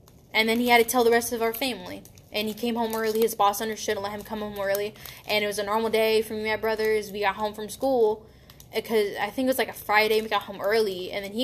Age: 10-29